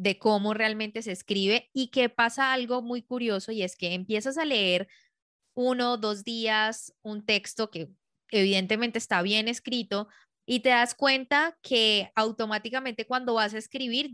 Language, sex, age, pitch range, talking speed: Spanish, female, 20-39, 190-230 Hz, 160 wpm